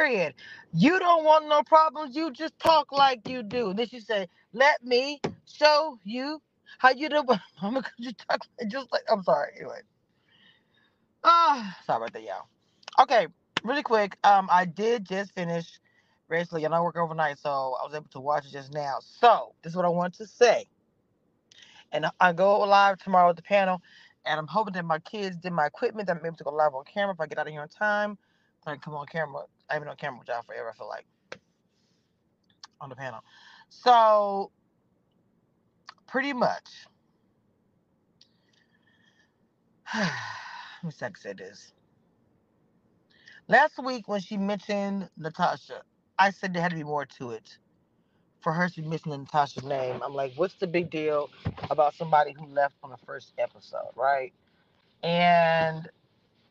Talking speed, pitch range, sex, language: 175 wpm, 155-240 Hz, female, English